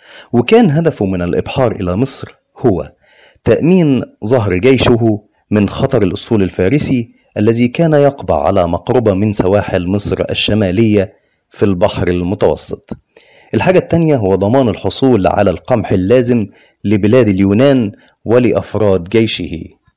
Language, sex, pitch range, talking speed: Arabic, male, 95-130 Hz, 115 wpm